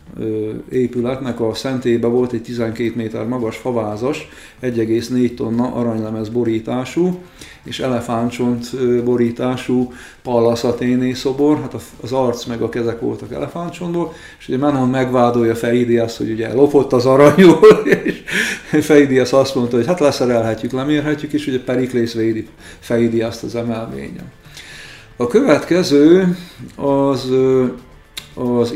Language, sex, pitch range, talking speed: Hungarian, male, 115-140 Hz, 115 wpm